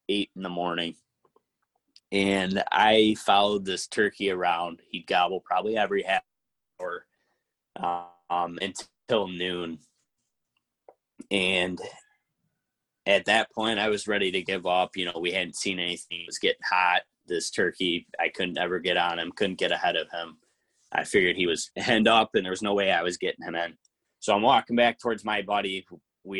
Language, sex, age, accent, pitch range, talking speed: English, male, 20-39, American, 90-115 Hz, 170 wpm